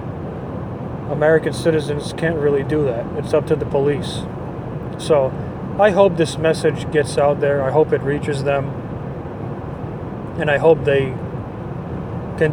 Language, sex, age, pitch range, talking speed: English, male, 40-59, 145-180 Hz, 140 wpm